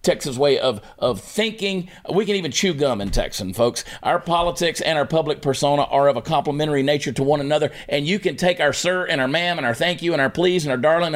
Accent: American